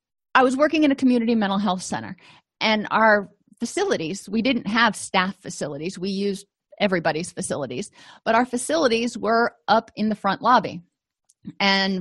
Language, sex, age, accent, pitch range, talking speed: English, female, 30-49, American, 200-245 Hz, 155 wpm